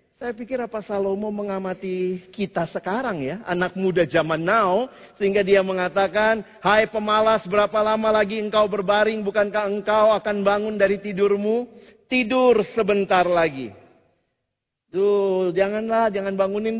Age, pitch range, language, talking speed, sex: 40-59, 175-230 Hz, Indonesian, 125 wpm, male